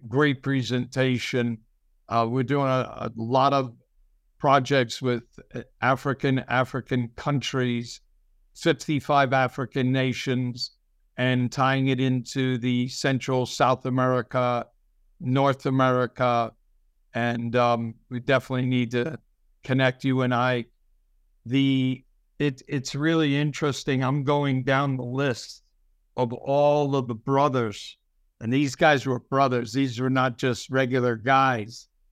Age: 60-79